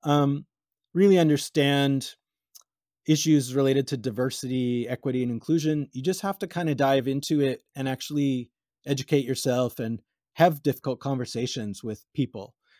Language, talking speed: English, 135 wpm